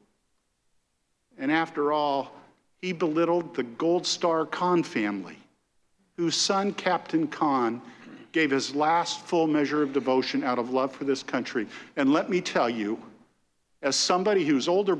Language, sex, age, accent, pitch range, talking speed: English, male, 50-69, American, 140-195 Hz, 145 wpm